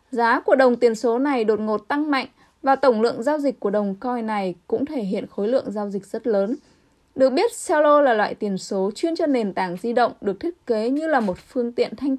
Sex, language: female, Vietnamese